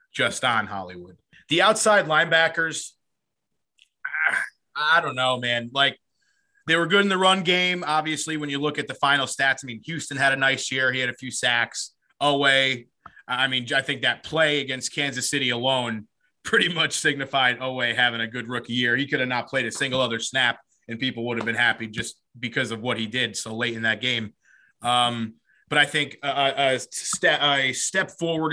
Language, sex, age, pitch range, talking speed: English, male, 30-49, 115-140 Hz, 200 wpm